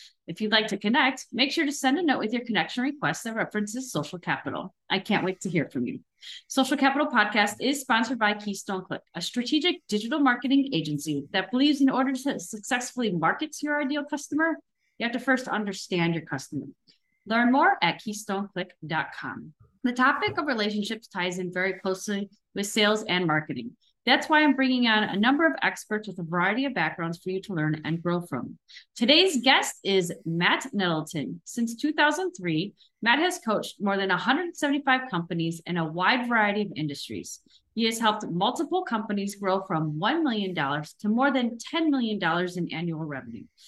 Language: English